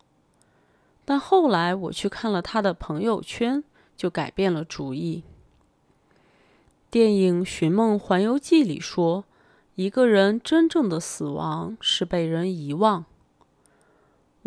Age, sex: 20-39, female